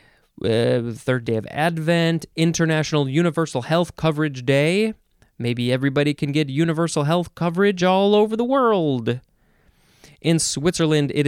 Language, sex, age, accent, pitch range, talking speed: English, male, 20-39, American, 130-170 Hz, 130 wpm